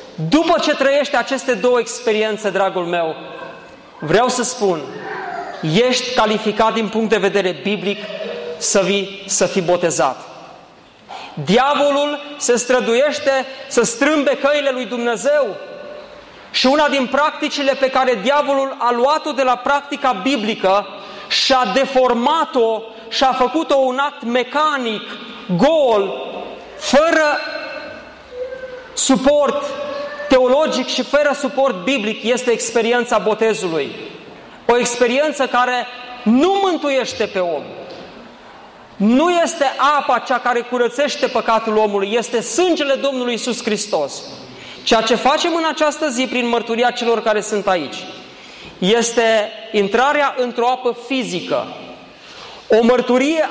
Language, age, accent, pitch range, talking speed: Romanian, 30-49, native, 225-280 Hz, 115 wpm